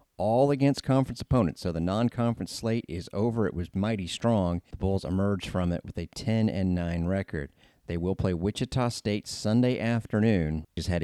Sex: male